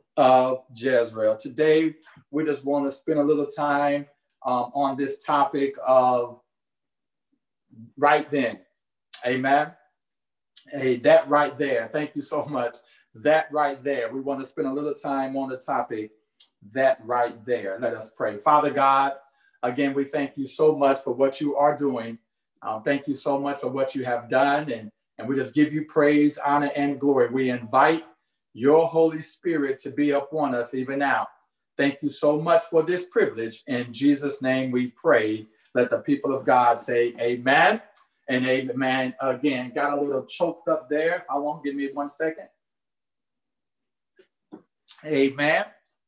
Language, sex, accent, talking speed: English, male, American, 165 wpm